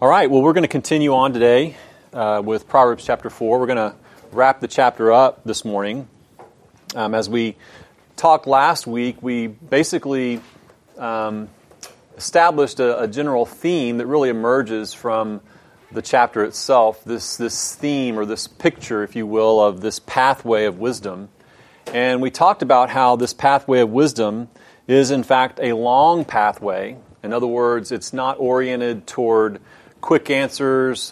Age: 30-49